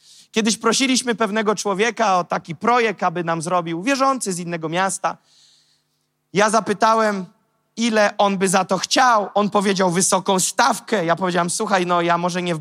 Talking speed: 160 wpm